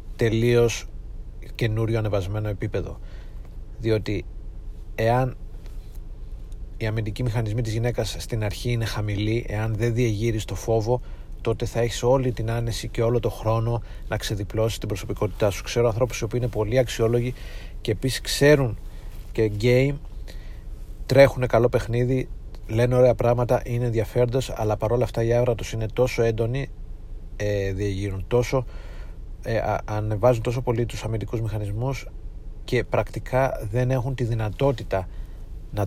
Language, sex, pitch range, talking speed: Greek, male, 95-120 Hz, 130 wpm